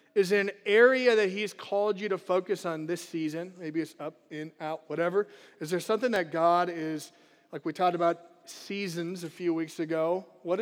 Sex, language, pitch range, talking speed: male, English, 160-200 Hz, 200 wpm